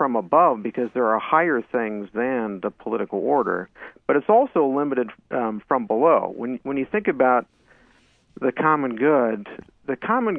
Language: English